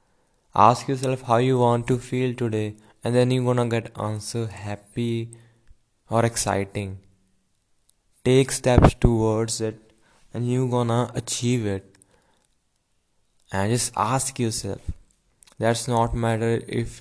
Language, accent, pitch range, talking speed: English, Indian, 110-130 Hz, 120 wpm